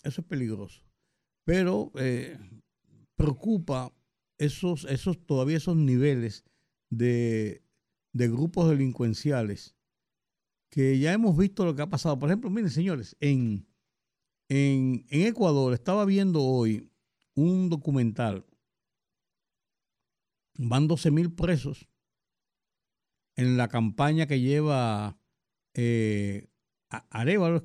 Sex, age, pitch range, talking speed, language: male, 60-79, 120-160 Hz, 105 wpm, Spanish